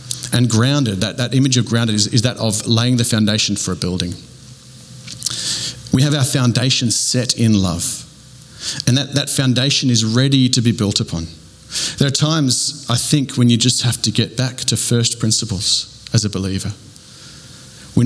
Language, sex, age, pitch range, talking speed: English, male, 40-59, 105-130 Hz, 175 wpm